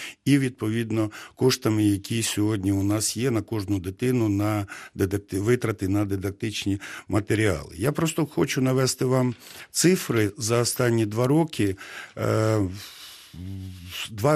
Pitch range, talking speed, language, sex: 105-130 Hz, 120 wpm, Ukrainian, male